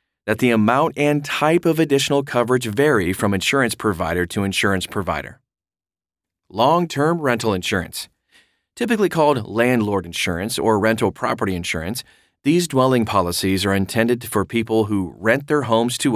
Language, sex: English, male